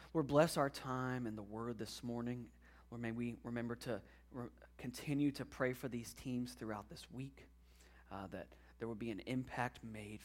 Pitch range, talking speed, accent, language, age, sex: 105-155 Hz, 180 wpm, American, English, 30-49, male